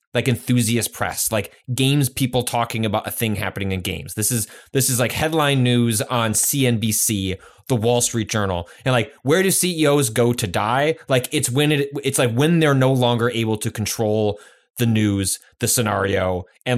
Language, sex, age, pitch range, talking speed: English, male, 20-39, 95-125 Hz, 185 wpm